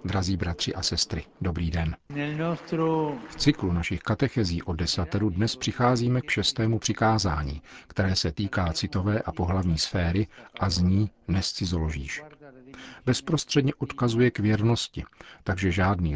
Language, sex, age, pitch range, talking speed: Czech, male, 50-69, 85-115 Hz, 125 wpm